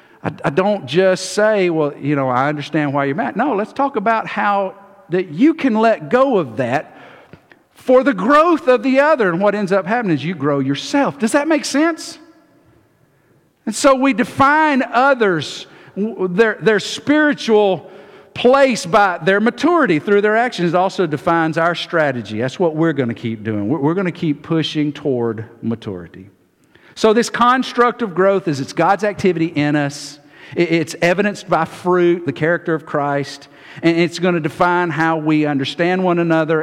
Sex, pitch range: male, 130-200 Hz